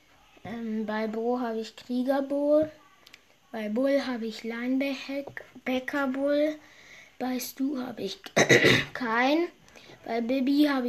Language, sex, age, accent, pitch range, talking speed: German, female, 20-39, German, 245-290 Hz, 105 wpm